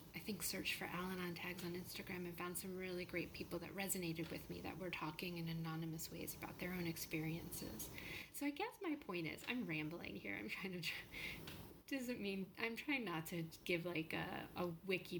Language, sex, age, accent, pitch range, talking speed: English, female, 30-49, American, 170-215 Hz, 205 wpm